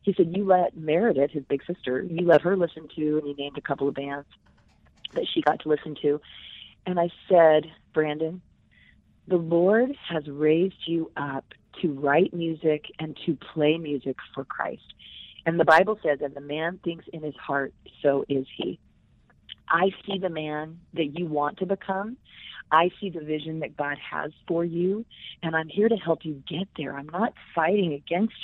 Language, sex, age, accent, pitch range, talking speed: English, female, 40-59, American, 145-180 Hz, 190 wpm